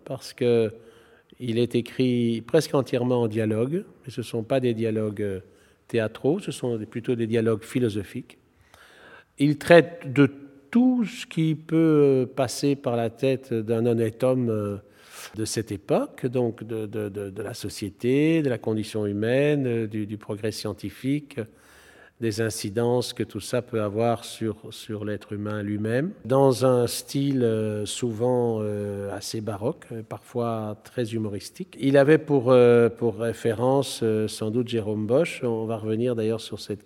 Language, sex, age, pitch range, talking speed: French, male, 50-69, 110-135 Hz, 145 wpm